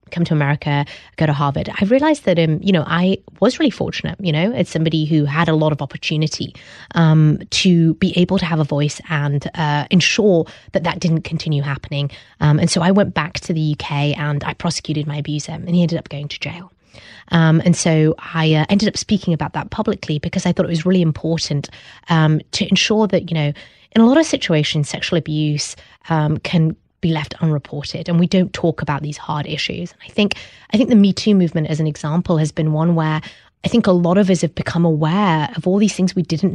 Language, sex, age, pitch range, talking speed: English, female, 20-39, 155-185 Hz, 225 wpm